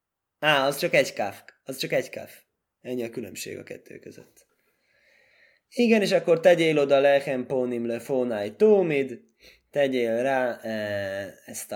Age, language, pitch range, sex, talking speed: 20-39, Hungarian, 115-160 Hz, male, 135 wpm